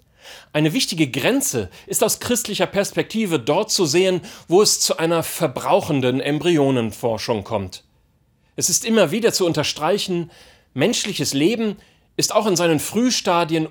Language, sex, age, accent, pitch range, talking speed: German, male, 40-59, German, 125-175 Hz, 130 wpm